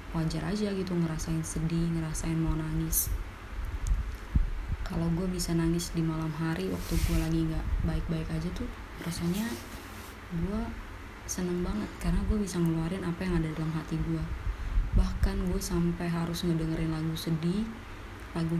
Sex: female